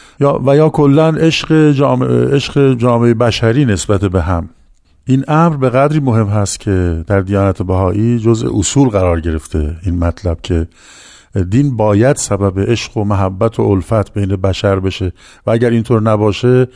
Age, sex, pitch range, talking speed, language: 50-69, male, 105-130 Hz, 150 wpm, Persian